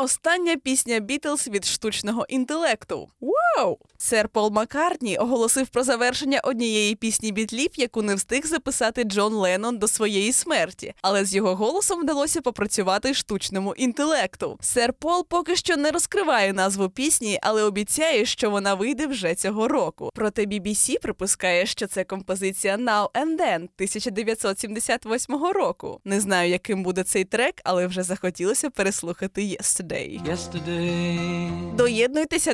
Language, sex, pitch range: Ukrainian, female, 195-265 Hz